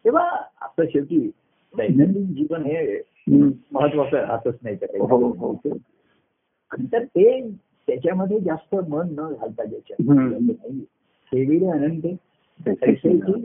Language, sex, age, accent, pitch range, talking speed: Marathi, male, 60-79, native, 145-200 Hz, 75 wpm